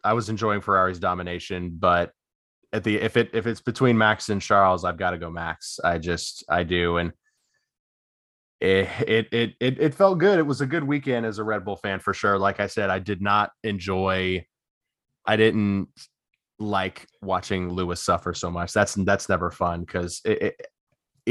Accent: American